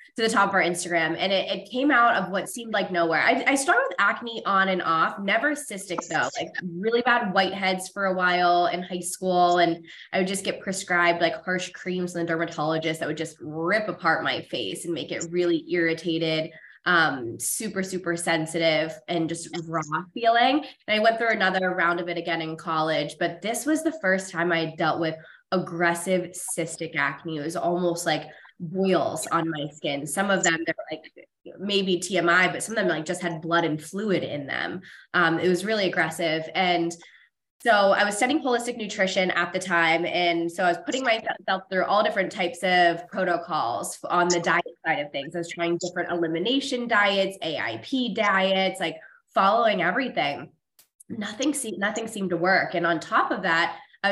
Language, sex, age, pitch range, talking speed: English, female, 20-39, 165-195 Hz, 195 wpm